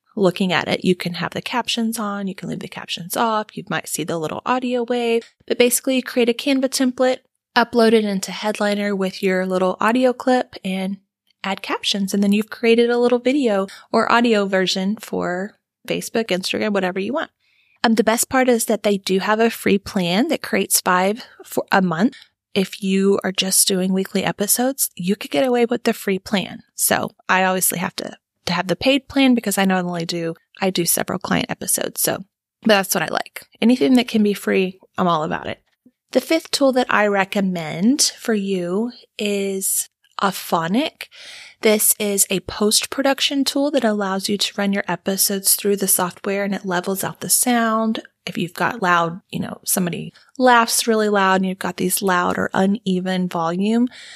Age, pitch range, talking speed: 20-39, 190-235 Hz, 190 wpm